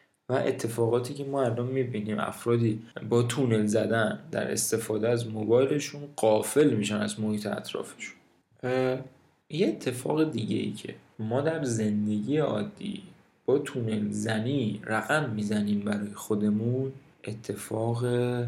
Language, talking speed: Persian, 115 wpm